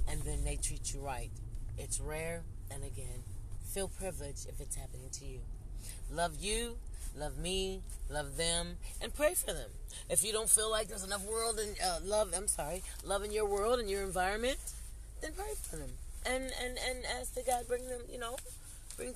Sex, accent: female, American